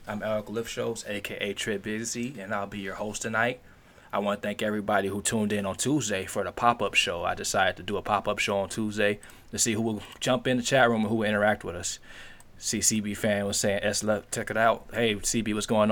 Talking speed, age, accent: 240 wpm, 20-39, American